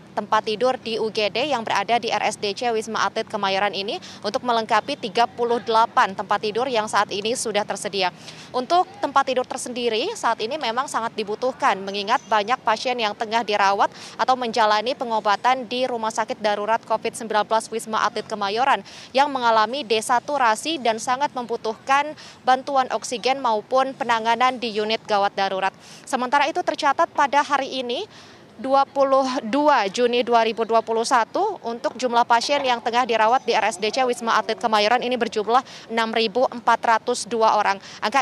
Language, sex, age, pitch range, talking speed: Indonesian, female, 20-39, 220-255 Hz, 135 wpm